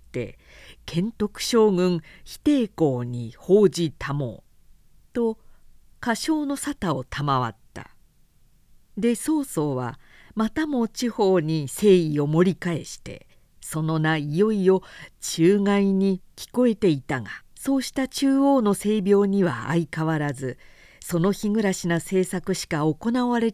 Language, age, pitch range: Japanese, 50-69, 150-220 Hz